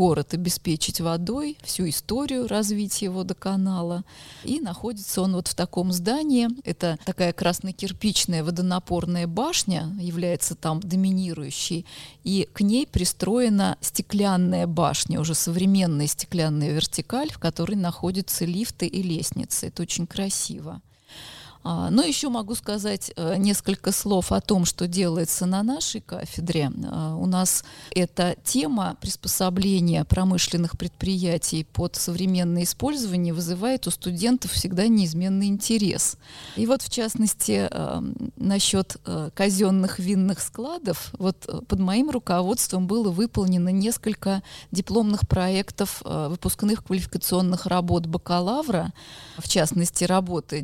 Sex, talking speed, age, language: female, 110 wpm, 20-39, Russian